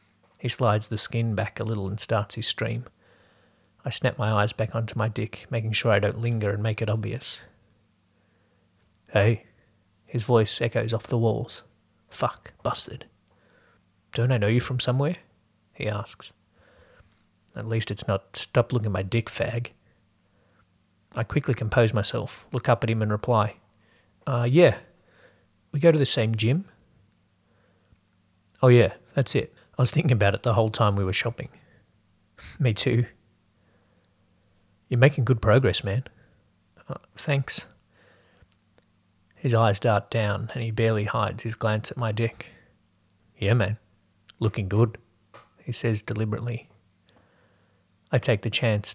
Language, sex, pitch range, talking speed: English, male, 100-120 Hz, 150 wpm